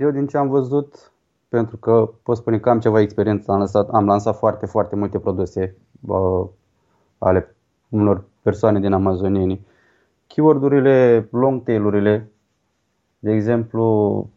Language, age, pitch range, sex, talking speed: Romanian, 20-39, 100-120 Hz, male, 130 wpm